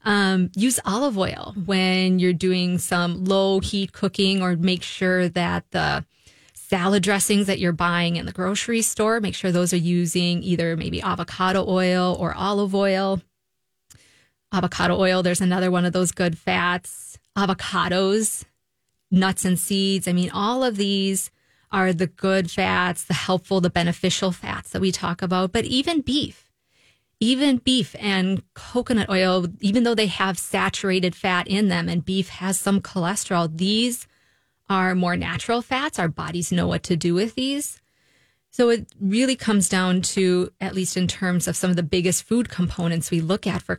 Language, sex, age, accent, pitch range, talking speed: English, female, 20-39, American, 180-200 Hz, 170 wpm